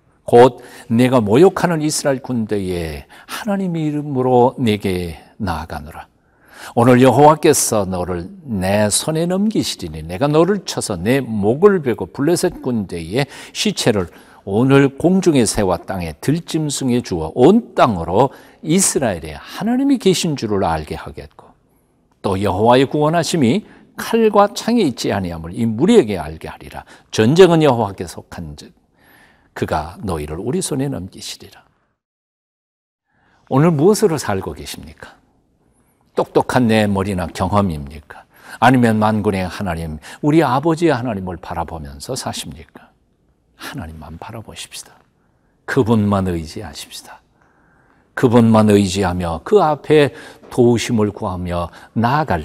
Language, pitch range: Korean, 90-150 Hz